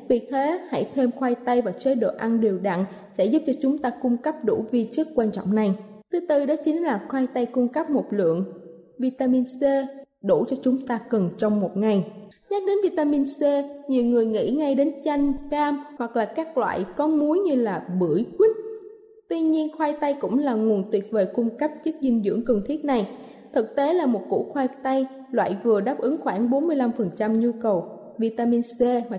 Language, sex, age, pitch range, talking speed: Vietnamese, female, 20-39, 225-290 Hz, 210 wpm